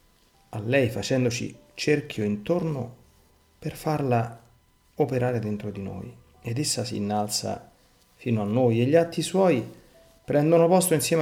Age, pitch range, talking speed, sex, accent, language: 40-59, 105-135 Hz, 130 wpm, male, native, Italian